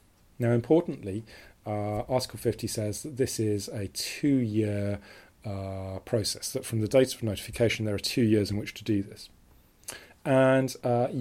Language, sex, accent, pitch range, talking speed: English, male, British, 100-115 Hz, 155 wpm